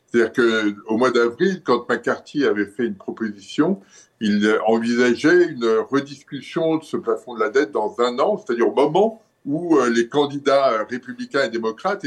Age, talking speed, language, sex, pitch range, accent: 60-79, 160 wpm, French, male, 115-160 Hz, French